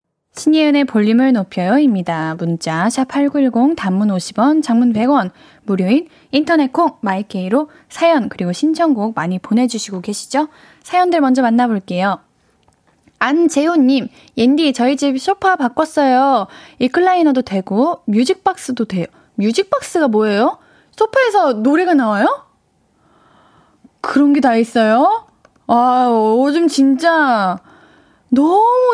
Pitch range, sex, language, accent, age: 225-320 Hz, female, Korean, native, 10-29